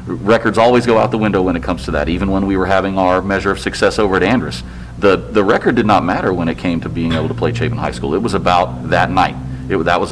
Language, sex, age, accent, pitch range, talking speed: English, male, 40-59, American, 85-105 Hz, 285 wpm